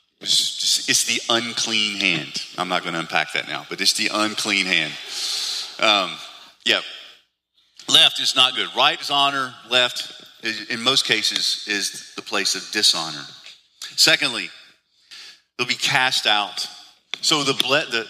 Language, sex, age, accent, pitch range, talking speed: English, male, 40-59, American, 105-140 Hz, 145 wpm